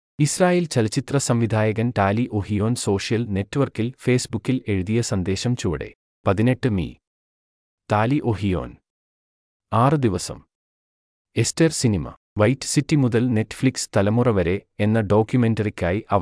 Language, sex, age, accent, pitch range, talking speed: Malayalam, male, 30-49, native, 95-125 Hz, 105 wpm